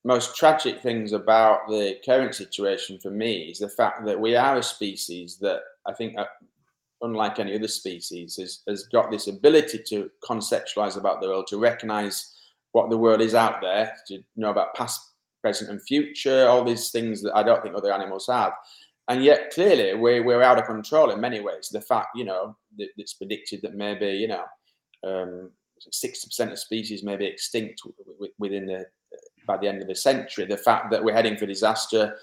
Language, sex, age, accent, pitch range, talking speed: English, male, 20-39, British, 105-125 Hz, 190 wpm